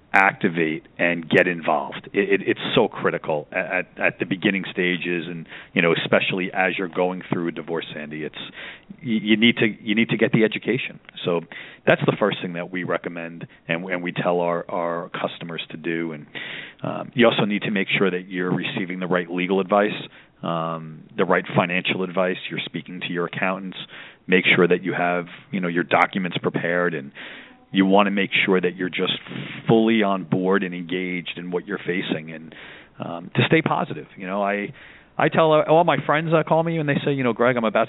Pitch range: 90-110 Hz